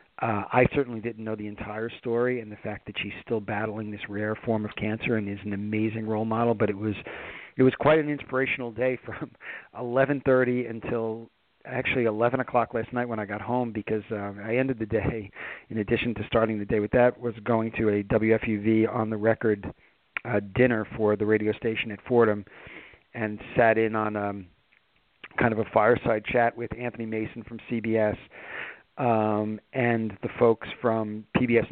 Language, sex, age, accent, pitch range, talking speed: English, male, 40-59, American, 110-120 Hz, 185 wpm